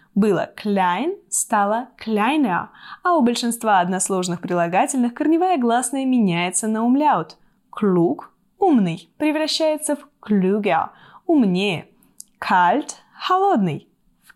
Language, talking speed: Russian, 95 wpm